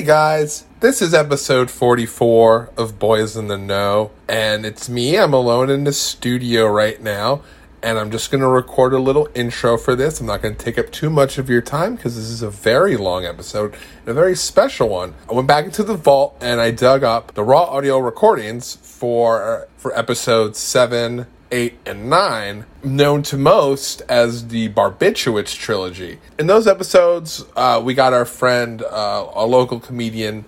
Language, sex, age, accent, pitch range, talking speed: English, male, 30-49, American, 110-140 Hz, 180 wpm